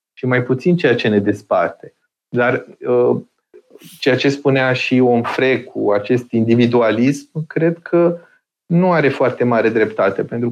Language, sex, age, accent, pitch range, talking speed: Romanian, male, 30-49, native, 115-140 Hz, 135 wpm